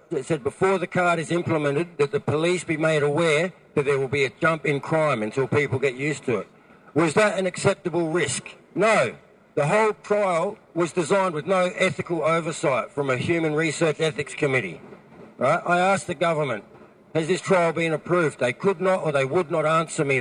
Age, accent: 60-79, Australian